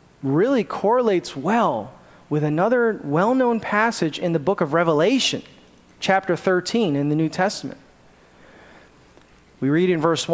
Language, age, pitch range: English, 30-49, 160-220 Hz